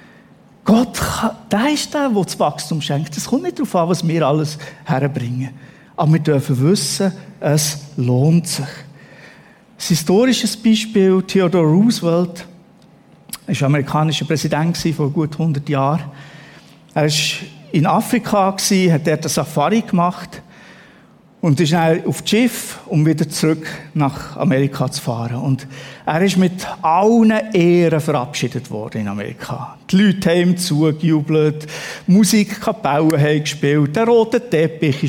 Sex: male